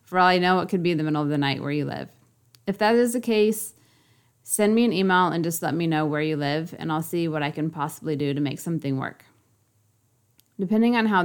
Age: 20-39